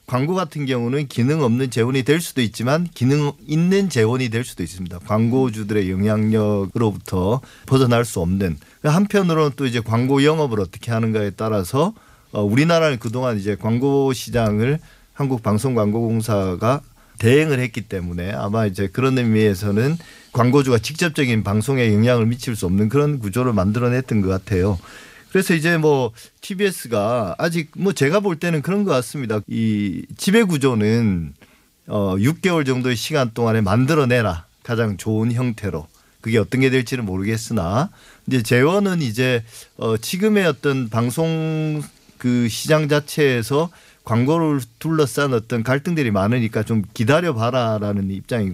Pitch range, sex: 105-145 Hz, male